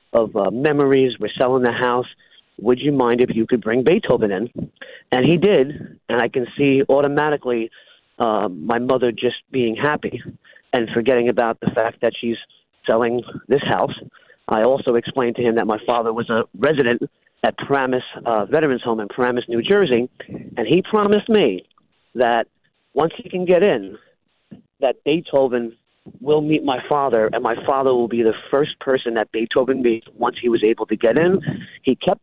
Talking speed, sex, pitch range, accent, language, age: 180 wpm, male, 120-145 Hz, American, English, 40-59